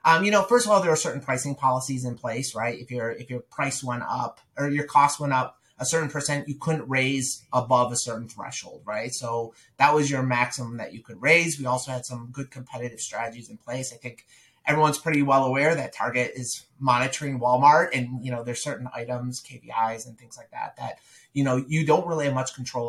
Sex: male